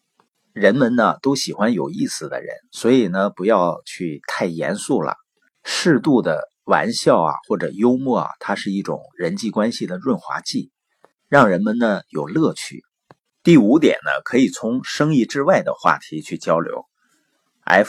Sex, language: male, Chinese